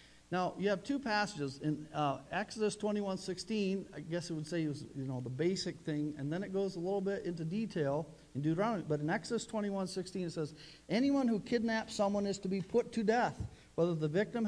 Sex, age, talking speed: male, 50-69, 225 wpm